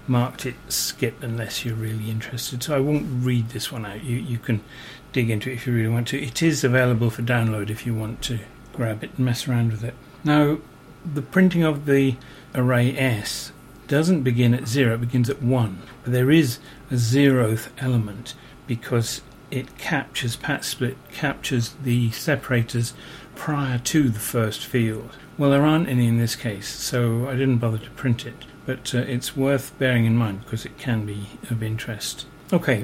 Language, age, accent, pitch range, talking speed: English, 40-59, British, 120-140 Hz, 190 wpm